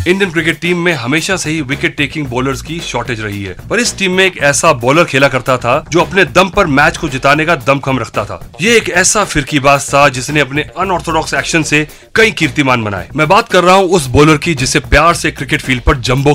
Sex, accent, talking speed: male, native, 235 wpm